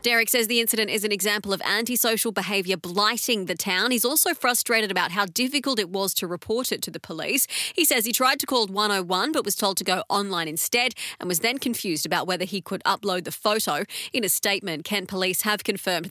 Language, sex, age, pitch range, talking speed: English, female, 30-49, 185-230 Hz, 220 wpm